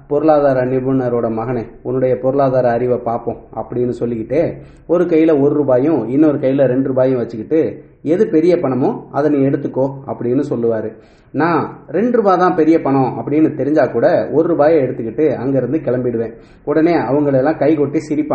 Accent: Indian